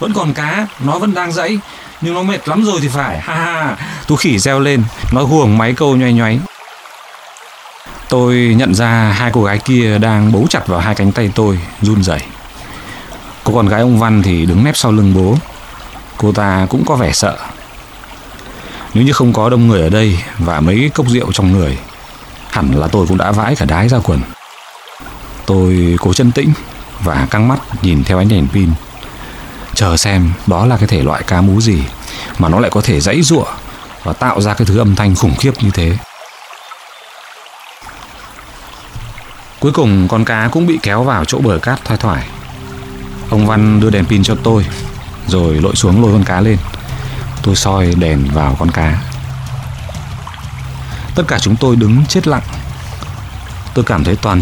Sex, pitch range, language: male, 95-125 Hz, Vietnamese